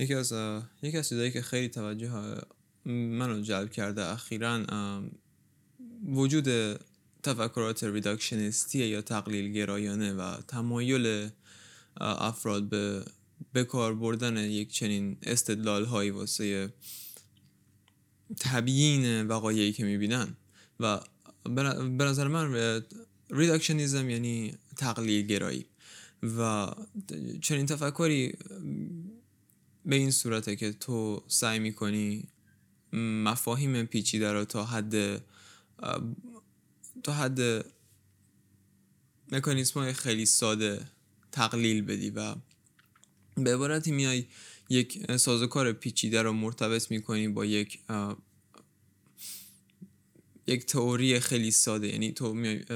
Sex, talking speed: male, 95 wpm